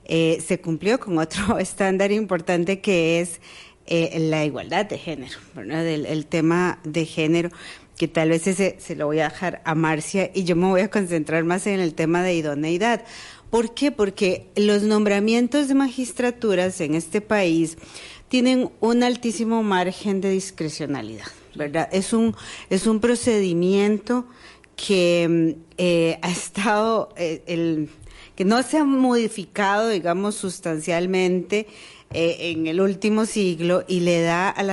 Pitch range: 165-210 Hz